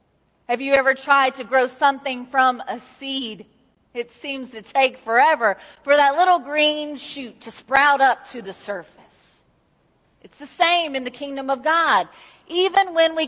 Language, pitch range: English, 245-300 Hz